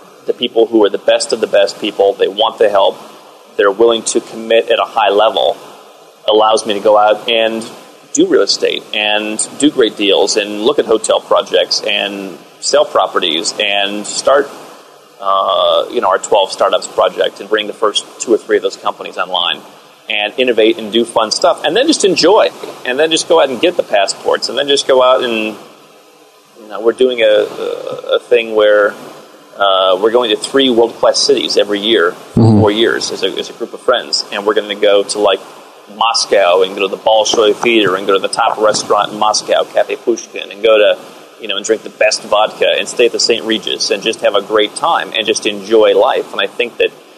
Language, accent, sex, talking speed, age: English, American, male, 210 wpm, 30-49